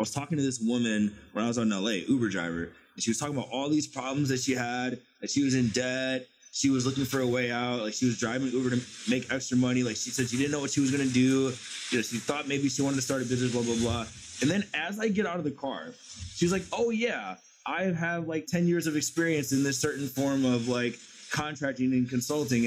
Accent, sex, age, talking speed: American, male, 20-39, 265 wpm